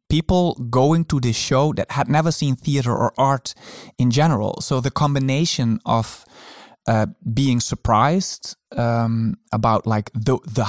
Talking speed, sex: 145 wpm, male